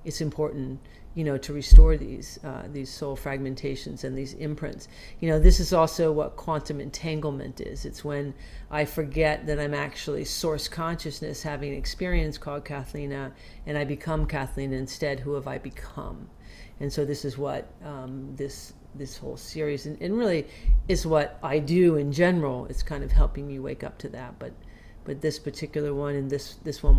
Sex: female